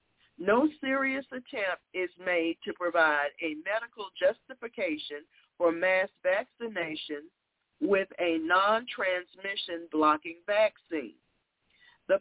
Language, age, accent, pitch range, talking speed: English, 50-69, American, 170-240 Hz, 95 wpm